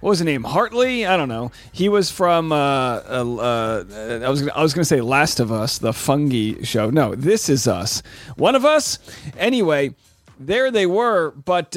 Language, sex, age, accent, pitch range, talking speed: English, male, 30-49, American, 130-190 Hz, 205 wpm